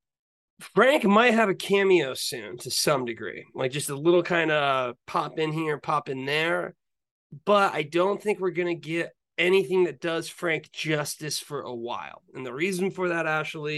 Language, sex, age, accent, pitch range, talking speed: English, male, 30-49, American, 130-175 Hz, 185 wpm